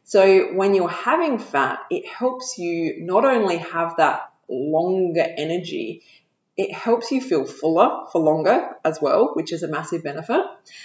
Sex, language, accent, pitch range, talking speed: female, English, Australian, 160-230 Hz, 155 wpm